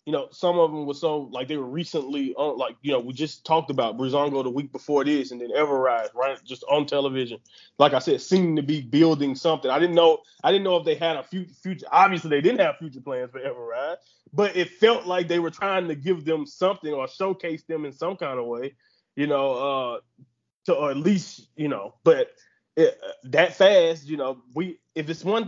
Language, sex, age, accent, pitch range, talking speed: English, male, 20-39, American, 145-180 Hz, 230 wpm